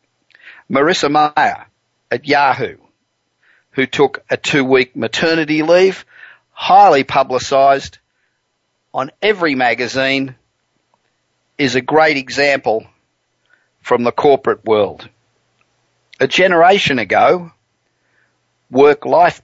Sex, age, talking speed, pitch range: male, 50-69, 85 wpm, 120-145 Hz